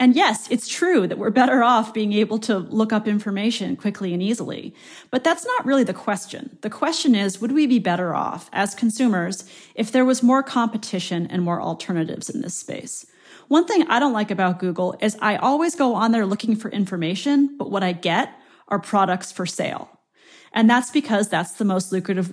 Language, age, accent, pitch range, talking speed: English, 30-49, American, 180-240 Hz, 200 wpm